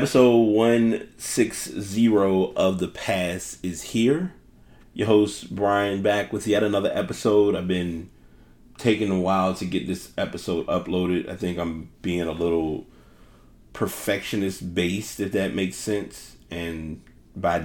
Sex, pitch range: male, 75-95 Hz